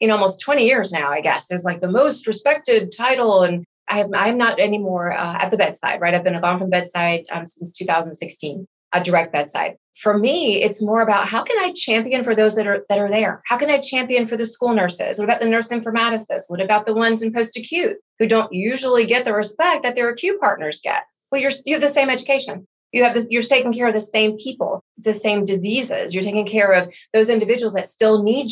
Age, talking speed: 30-49, 235 wpm